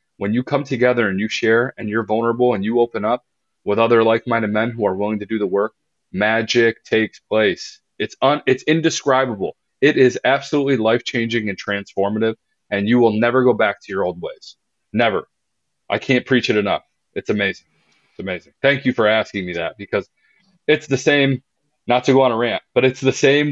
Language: English